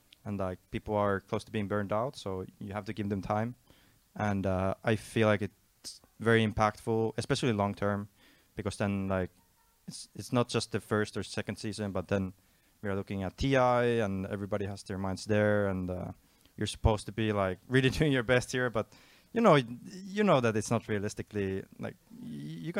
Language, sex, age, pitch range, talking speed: English, male, 20-39, 100-125 Hz, 195 wpm